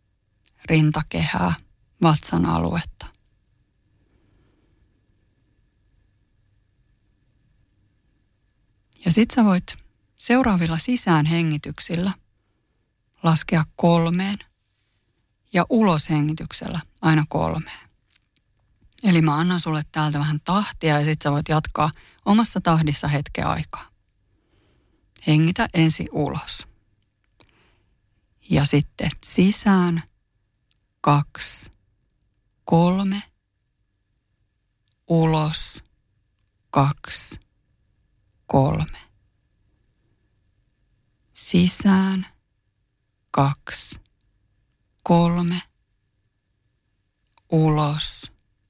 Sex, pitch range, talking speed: female, 105-160 Hz, 60 wpm